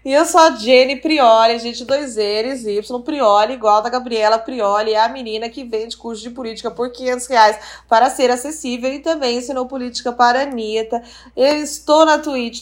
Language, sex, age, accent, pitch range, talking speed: Portuguese, female, 20-39, Brazilian, 235-315 Hz, 195 wpm